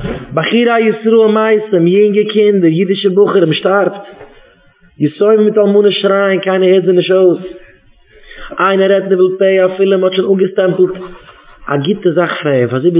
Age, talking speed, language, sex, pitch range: 30-49, 90 wpm, English, male, 150-195 Hz